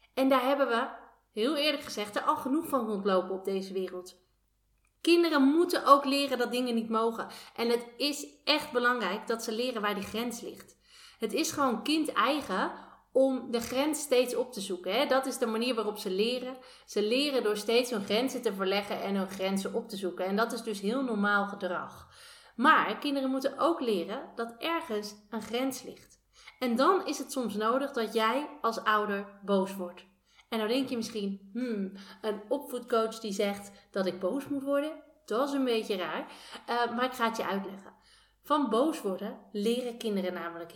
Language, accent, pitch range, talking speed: Dutch, Dutch, 200-270 Hz, 190 wpm